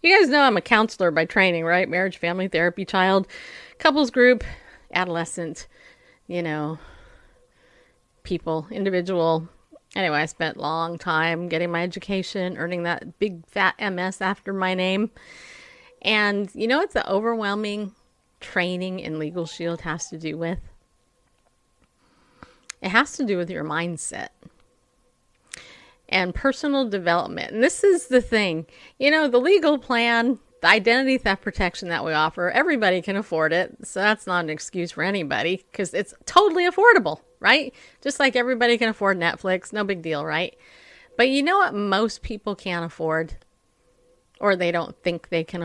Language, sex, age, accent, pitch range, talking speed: English, female, 30-49, American, 170-235 Hz, 155 wpm